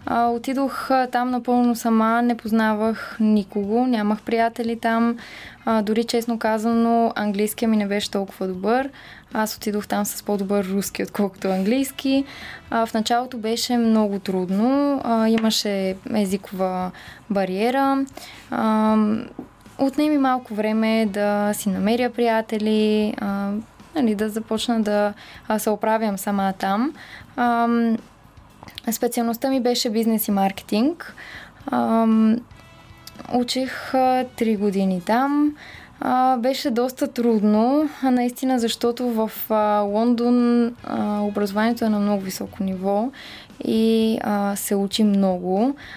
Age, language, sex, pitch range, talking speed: 20-39, Bulgarian, female, 205-240 Hz, 100 wpm